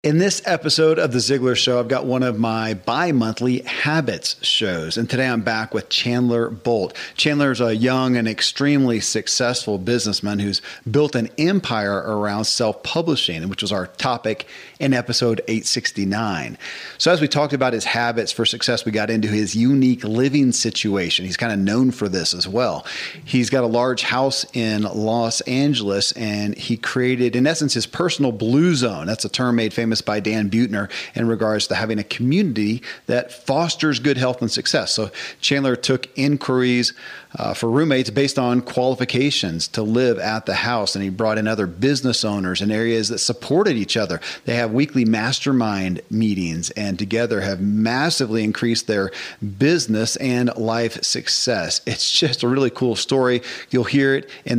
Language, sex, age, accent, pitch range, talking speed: English, male, 40-59, American, 110-130 Hz, 175 wpm